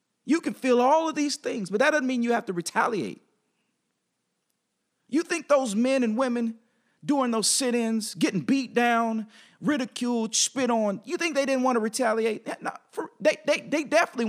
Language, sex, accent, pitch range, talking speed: English, male, American, 205-260 Hz, 170 wpm